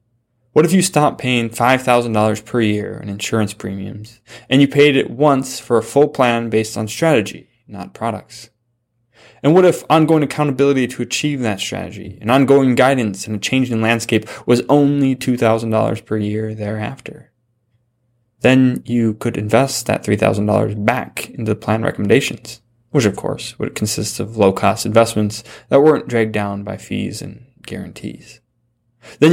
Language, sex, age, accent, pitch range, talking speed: English, male, 20-39, American, 110-125 Hz, 155 wpm